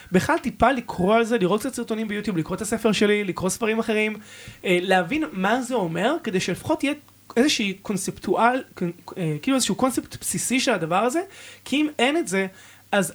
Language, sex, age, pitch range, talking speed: Hebrew, male, 20-39, 185-240 Hz, 175 wpm